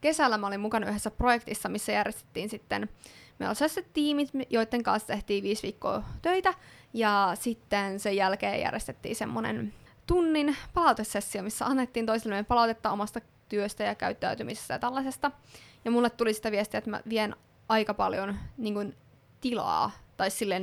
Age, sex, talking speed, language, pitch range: 20-39, female, 145 wpm, Finnish, 200-235 Hz